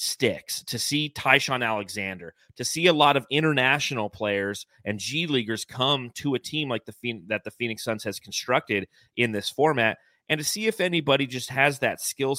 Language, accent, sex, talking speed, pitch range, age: English, American, male, 195 wpm, 110-150 Hz, 30-49